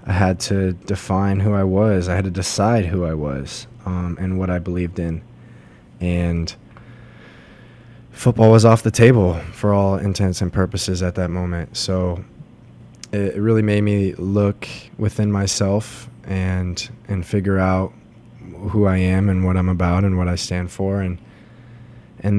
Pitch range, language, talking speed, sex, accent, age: 95-110 Hz, English, 160 wpm, male, American, 20-39